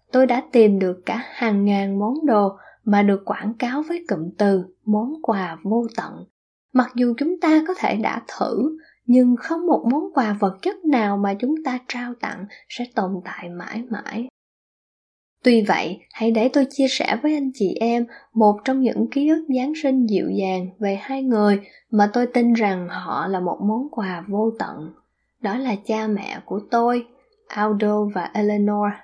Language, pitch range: Vietnamese, 205-255 Hz